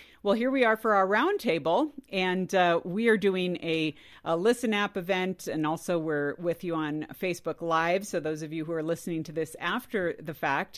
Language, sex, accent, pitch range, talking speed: English, female, American, 160-205 Hz, 205 wpm